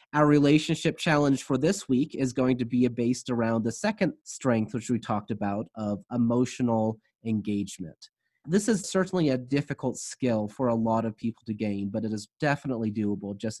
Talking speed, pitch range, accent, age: 180 wpm, 115-155 Hz, American, 30-49